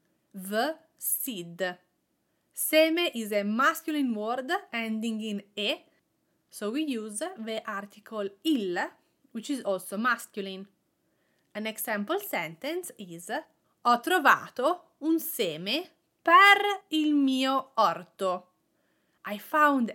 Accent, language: Italian, English